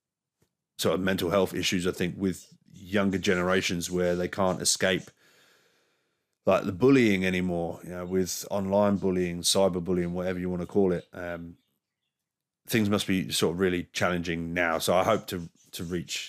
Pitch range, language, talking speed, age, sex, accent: 90-100 Hz, English, 170 wpm, 30-49, male, British